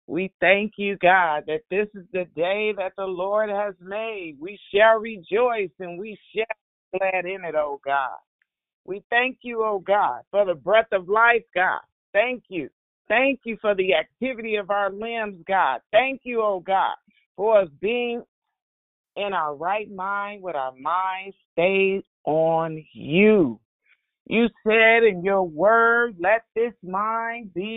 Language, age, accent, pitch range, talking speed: English, 50-69, American, 185-225 Hz, 160 wpm